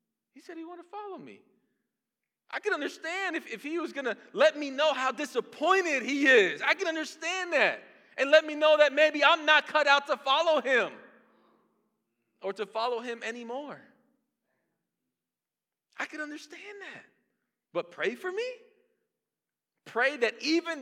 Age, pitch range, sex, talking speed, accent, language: 40-59, 220-315 Hz, male, 160 wpm, American, English